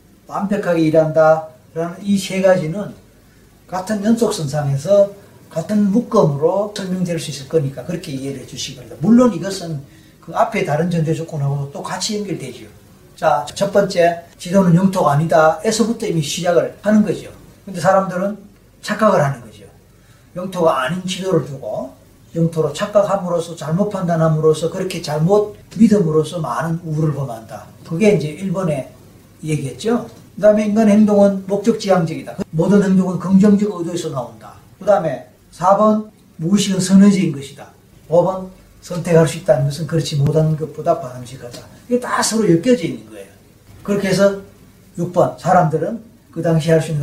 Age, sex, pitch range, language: 40-59, male, 140-190 Hz, Korean